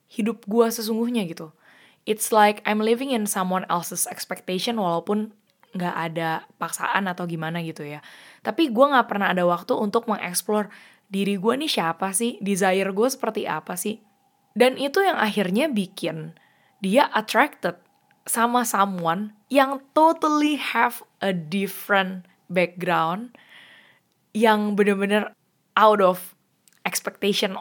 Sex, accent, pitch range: female, native, 175-225 Hz